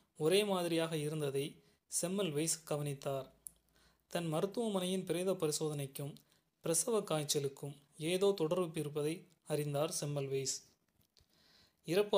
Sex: male